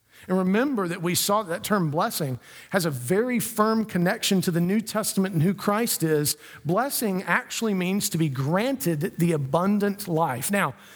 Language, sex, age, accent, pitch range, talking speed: English, male, 50-69, American, 170-230 Hz, 170 wpm